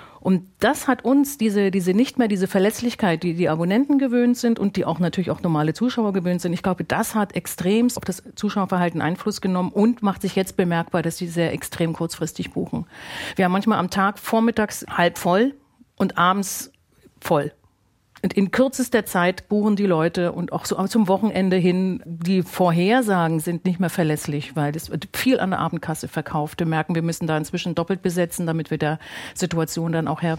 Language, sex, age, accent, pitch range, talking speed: German, female, 40-59, German, 170-205 Hz, 195 wpm